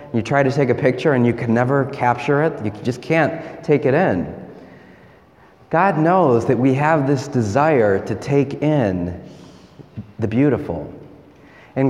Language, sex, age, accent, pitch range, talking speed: English, male, 30-49, American, 115-150 Hz, 155 wpm